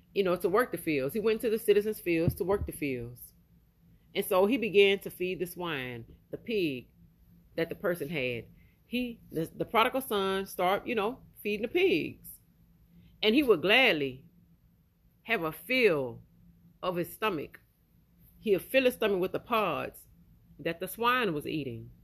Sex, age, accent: female, 40-59, American